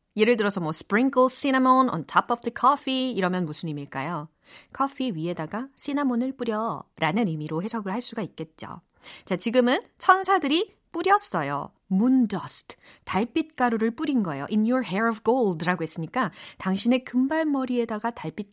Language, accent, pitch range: Korean, native, 175-255 Hz